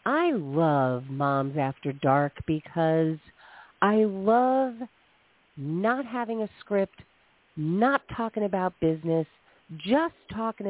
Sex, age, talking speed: female, 40-59, 100 wpm